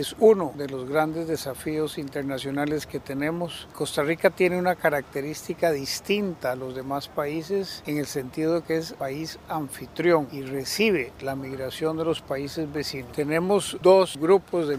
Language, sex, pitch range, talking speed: Spanish, male, 135-170 Hz, 160 wpm